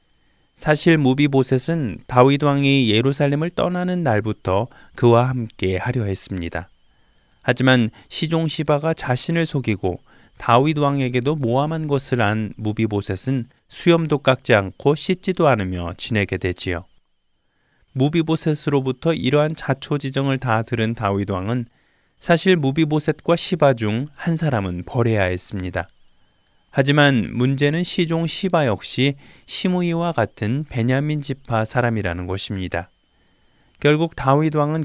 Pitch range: 105-150 Hz